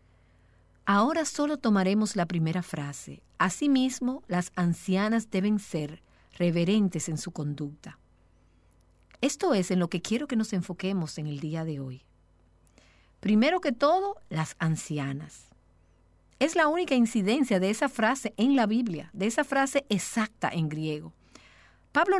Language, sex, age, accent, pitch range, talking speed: Spanish, female, 50-69, American, 155-230 Hz, 140 wpm